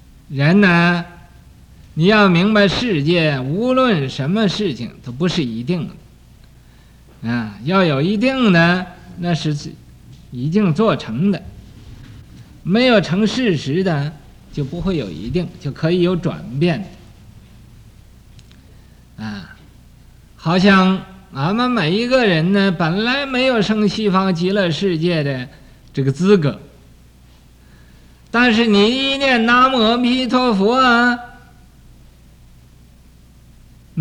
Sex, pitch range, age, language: male, 135-205 Hz, 50-69, Chinese